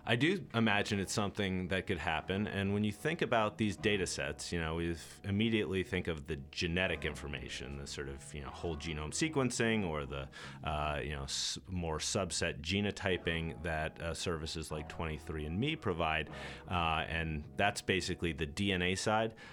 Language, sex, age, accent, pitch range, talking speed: English, male, 30-49, American, 80-95 Hz, 170 wpm